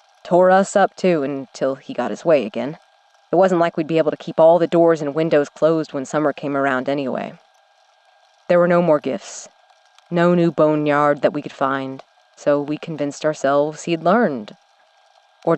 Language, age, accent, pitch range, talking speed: English, 30-49, American, 145-185 Hz, 185 wpm